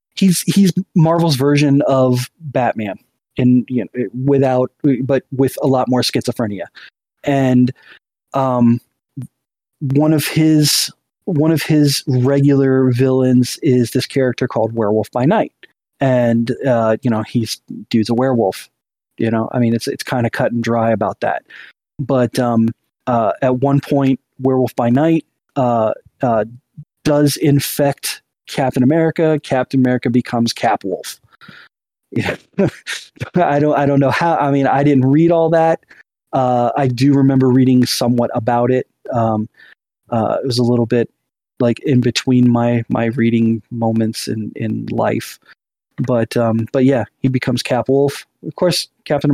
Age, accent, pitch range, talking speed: 20-39, American, 120-140 Hz, 150 wpm